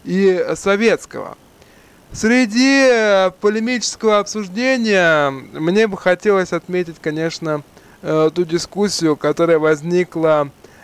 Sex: male